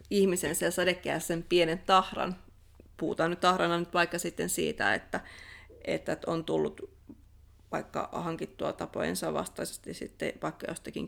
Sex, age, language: female, 30-49, Finnish